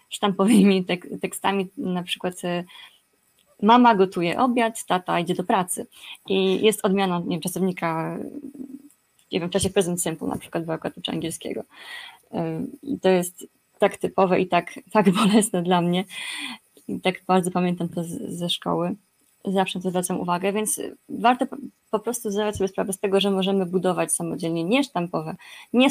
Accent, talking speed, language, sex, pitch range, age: native, 150 wpm, Polish, female, 175-220 Hz, 20-39